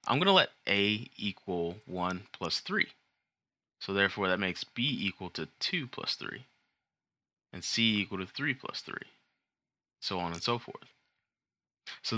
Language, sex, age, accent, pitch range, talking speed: English, male, 20-39, American, 90-120 Hz, 160 wpm